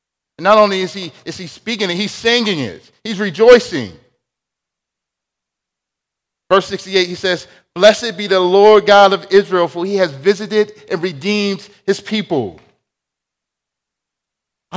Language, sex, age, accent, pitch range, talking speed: English, male, 40-59, American, 180-220 Hz, 130 wpm